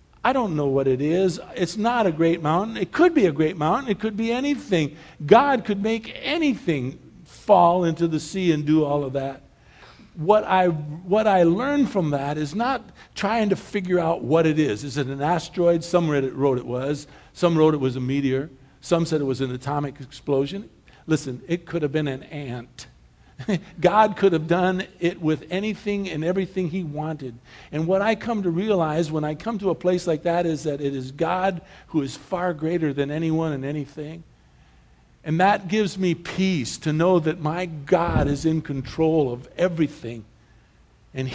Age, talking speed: 50-69, 195 wpm